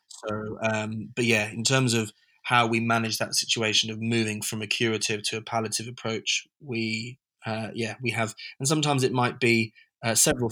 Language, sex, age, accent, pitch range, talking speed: English, male, 20-39, British, 110-120 Hz, 190 wpm